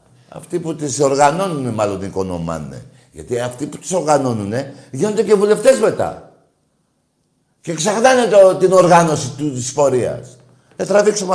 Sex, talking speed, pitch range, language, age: male, 130 wpm, 115-175 Hz, Greek, 60-79